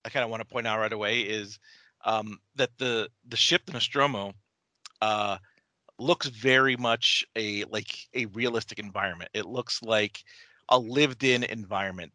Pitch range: 105-125 Hz